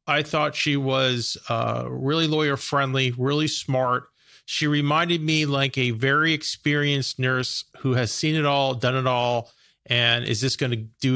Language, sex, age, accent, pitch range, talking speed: English, male, 40-59, American, 125-155 Hz, 165 wpm